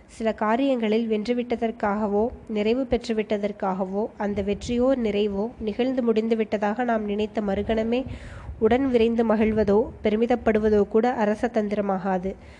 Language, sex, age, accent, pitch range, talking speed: Tamil, female, 20-39, native, 210-235 Hz, 95 wpm